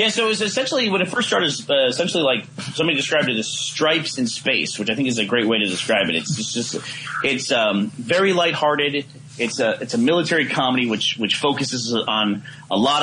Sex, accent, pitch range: male, American, 120-155 Hz